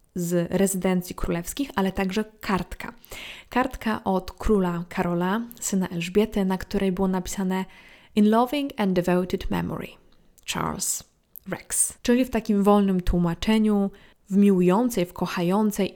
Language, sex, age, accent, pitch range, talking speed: Polish, female, 20-39, native, 185-225 Hz, 120 wpm